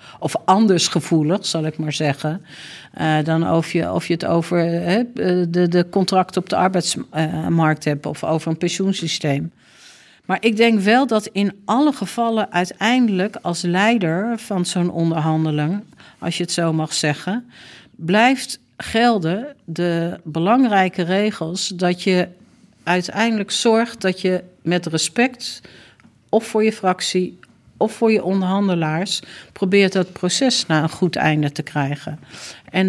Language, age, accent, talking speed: Dutch, 50-69, Dutch, 135 wpm